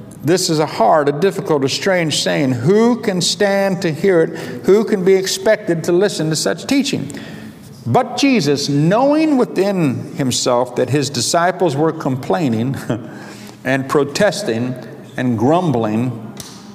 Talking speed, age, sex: 135 wpm, 60-79, male